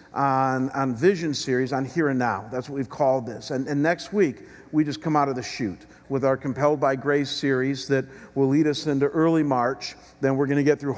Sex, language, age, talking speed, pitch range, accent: male, English, 50-69, 235 wpm, 130-150 Hz, American